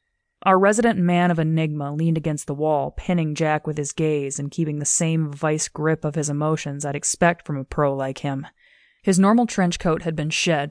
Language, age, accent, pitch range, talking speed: English, 20-39, American, 150-175 Hz, 205 wpm